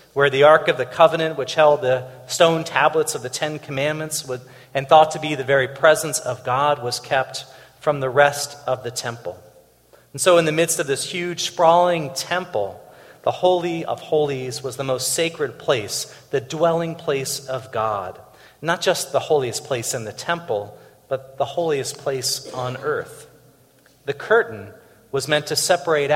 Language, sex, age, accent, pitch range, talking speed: English, male, 40-59, American, 130-170 Hz, 175 wpm